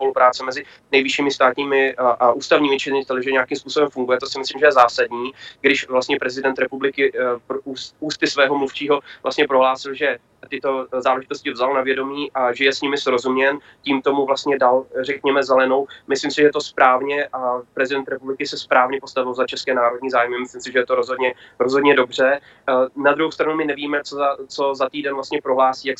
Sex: male